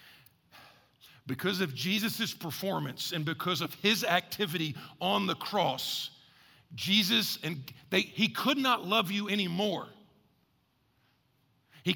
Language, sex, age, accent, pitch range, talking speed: English, male, 50-69, American, 150-210 Hz, 110 wpm